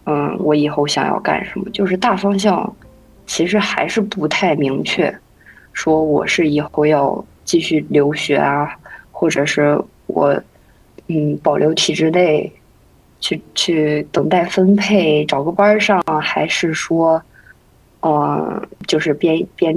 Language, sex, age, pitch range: Chinese, female, 20-39, 155-205 Hz